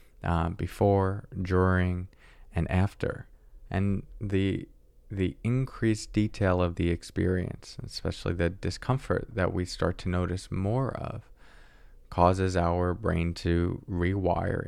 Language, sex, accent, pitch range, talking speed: English, male, American, 85-115 Hz, 115 wpm